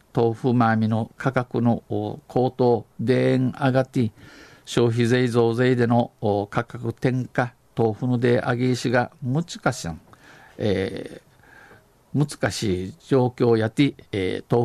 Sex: male